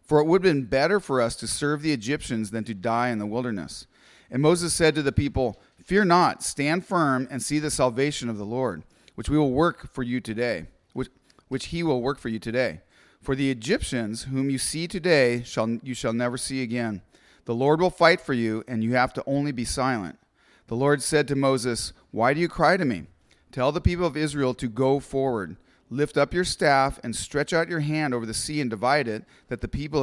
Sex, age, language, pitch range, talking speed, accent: male, 30-49, English, 120-150 Hz, 225 wpm, American